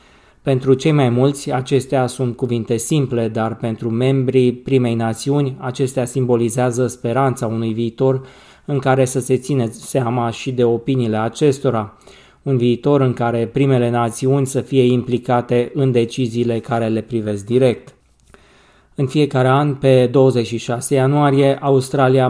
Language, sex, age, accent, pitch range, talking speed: Romanian, male, 20-39, native, 120-135 Hz, 135 wpm